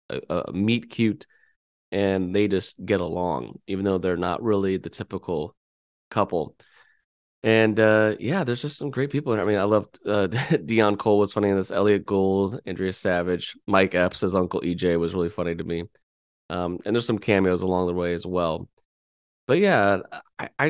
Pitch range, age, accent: 90-110 Hz, 20-39, American